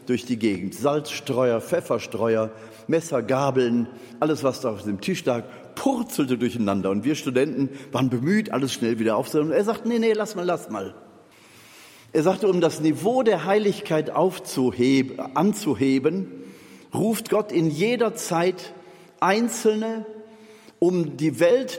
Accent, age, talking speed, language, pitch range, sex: German, 40-59, 140 wpm, German, 130-195 Hz, male